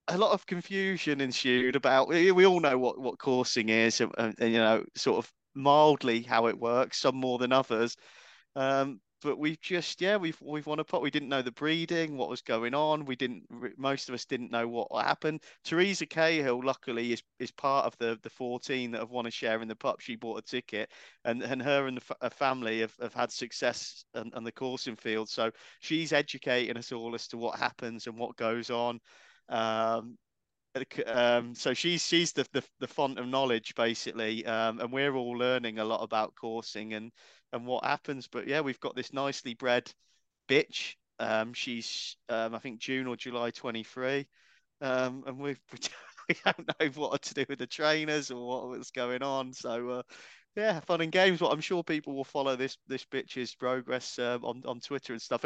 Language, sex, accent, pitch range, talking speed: English, male, British, 115-145 Hz, 205 wpm